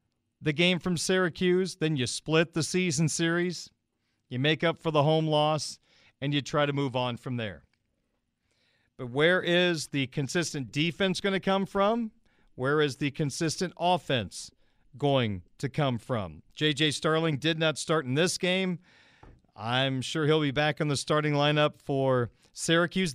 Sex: male